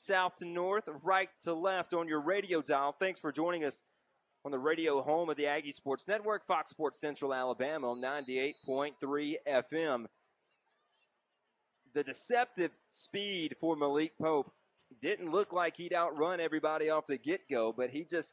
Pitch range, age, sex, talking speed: 150-190 Hz, 30-49, male, 155 wpm